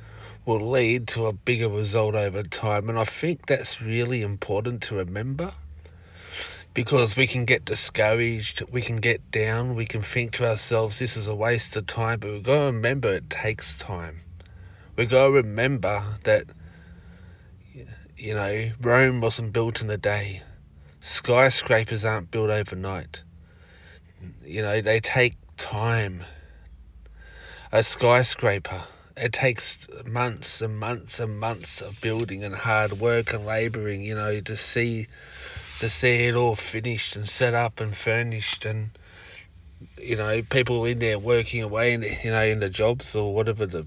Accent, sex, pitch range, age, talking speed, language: Australian, male, 95-115 Hz, 30-49, 155 wpm, English